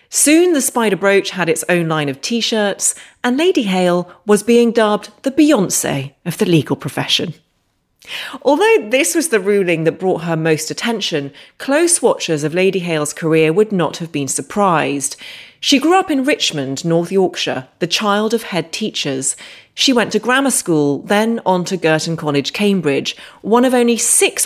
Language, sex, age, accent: English, female, 30-49, British